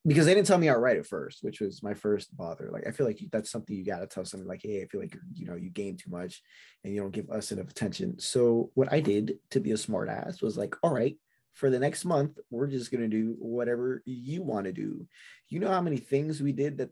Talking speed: 285 wpm